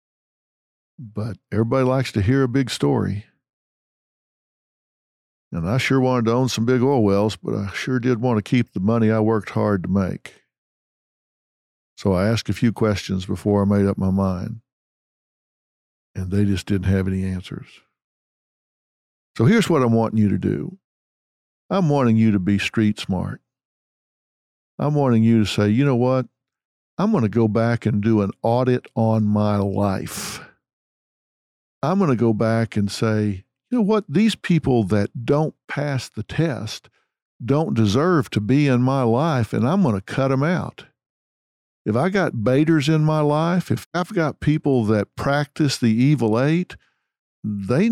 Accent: American